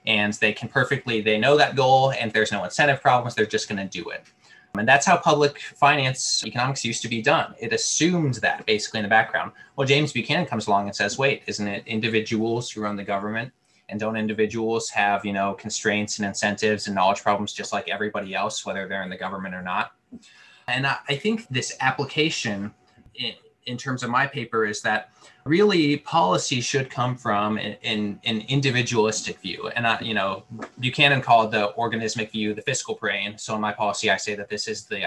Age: 20-39